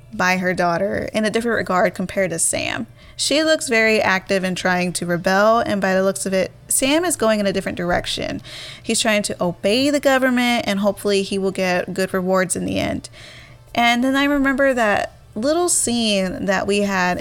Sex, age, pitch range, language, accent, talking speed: female, 20-39, 185-230 Hz, English, American, 200 wpm